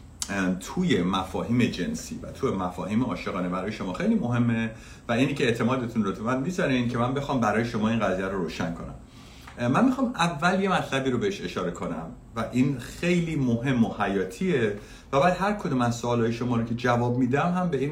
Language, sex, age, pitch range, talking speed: Persian, male, 50-69, 90-135 Hz, 190 wpm